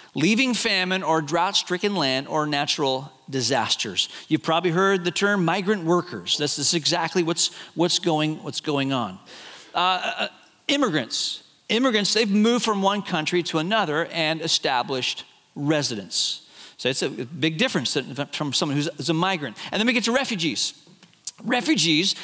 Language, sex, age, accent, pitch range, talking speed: English, male, 40-59, American, 155-210 Hz, 145 wpm